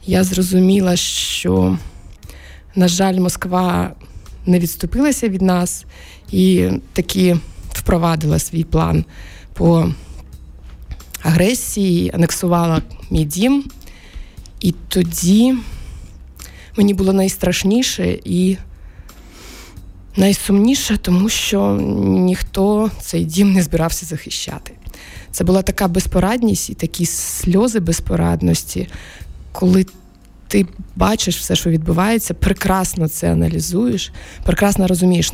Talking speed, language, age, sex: 90 wpm, Ukrainian, 20-39, female